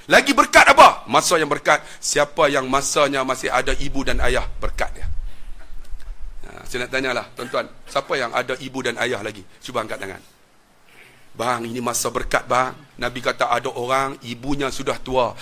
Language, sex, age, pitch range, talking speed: Malay, male, 40-59, 120-155 Hz, 165 wpm